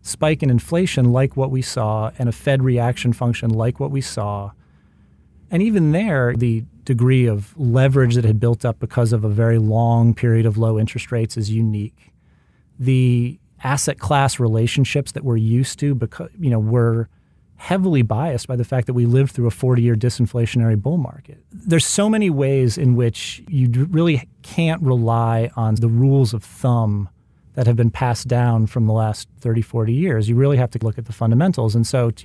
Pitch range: 115-130 Hz